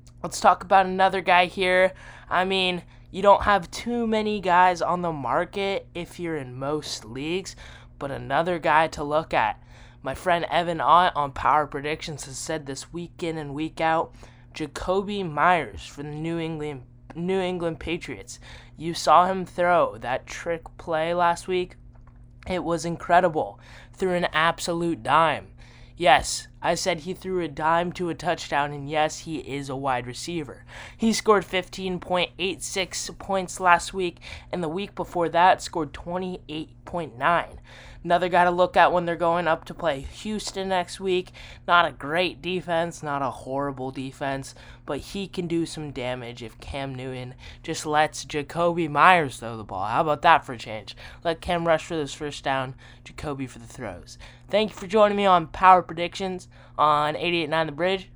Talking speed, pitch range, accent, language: 170 wpm, 135-180 Hz, American, English